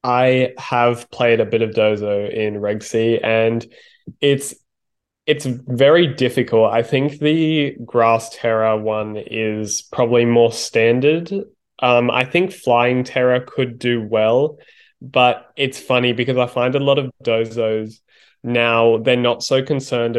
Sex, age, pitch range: male, 10-29, 110-125 Hz